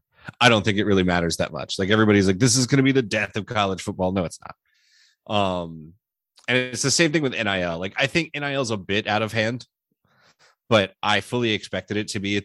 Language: English